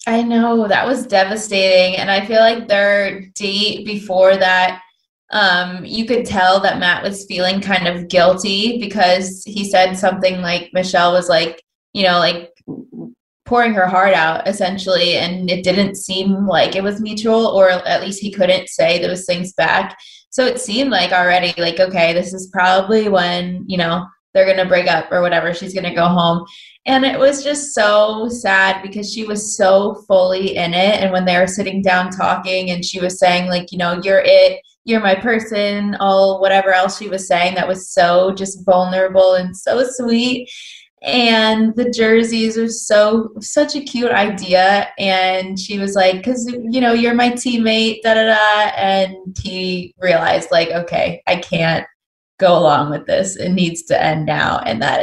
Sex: female